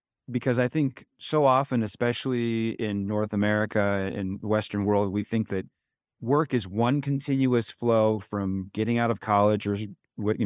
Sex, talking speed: male, 155 wpm